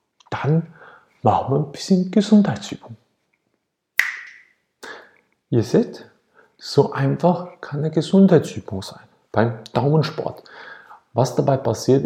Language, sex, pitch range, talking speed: German, male, 115-155 Hz, 95 wpm